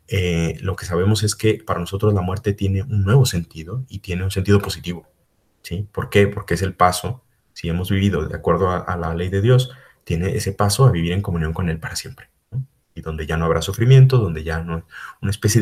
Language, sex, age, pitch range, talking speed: Spanish, male, 30-49, 85-110 Hz, 230 wpm